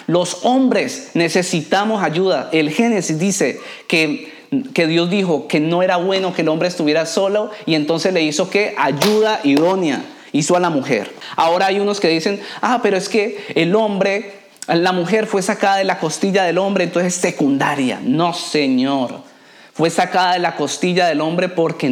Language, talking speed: Spanish, 175 wpm